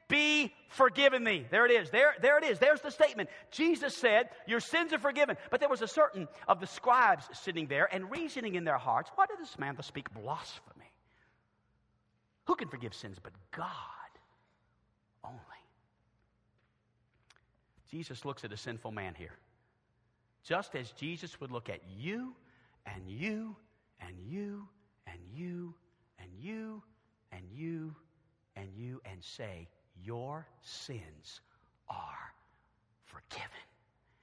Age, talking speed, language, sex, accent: 50-69, 140 wpm, English, male, American